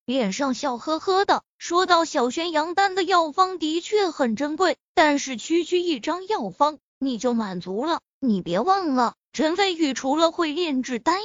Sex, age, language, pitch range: female, 20-39, Chinese, 260-360 Hz